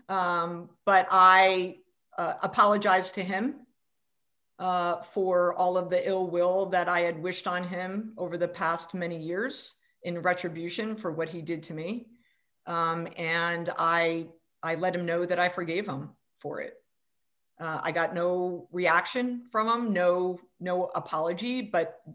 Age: 50-69